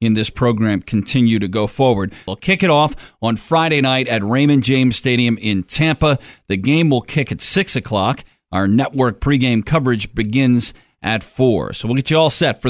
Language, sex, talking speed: English, male, 195 wpm